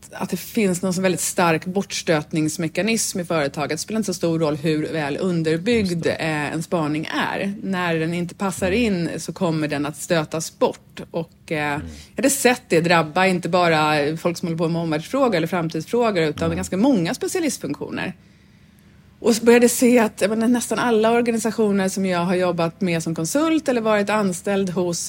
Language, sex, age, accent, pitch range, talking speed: Swedish, female, 30-49, native, 160-210 Hz, 180 wpm